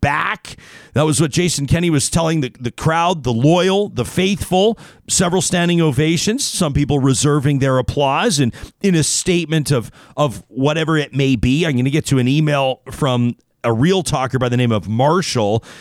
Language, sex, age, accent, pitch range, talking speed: English, male, 40-59, American, 125-160 Hz, 185 wpm